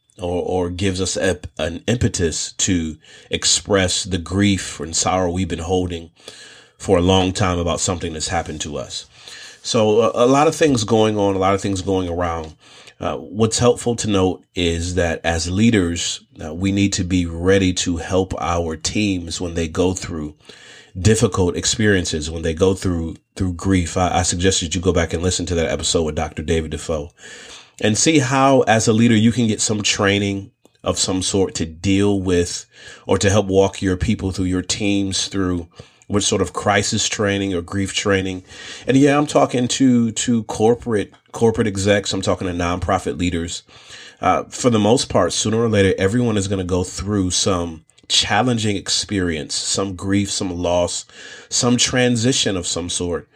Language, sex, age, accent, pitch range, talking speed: English, male, 30-49, American, 90-105 Hz, 180 wpm